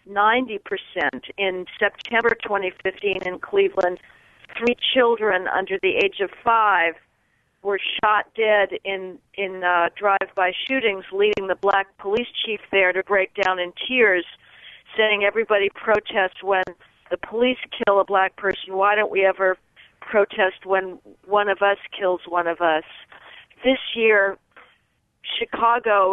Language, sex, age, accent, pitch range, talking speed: English, female, 50-69, American, 180-210 Hz, 135 wpm